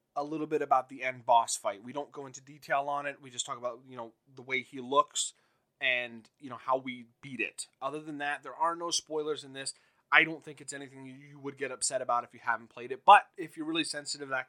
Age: 20-39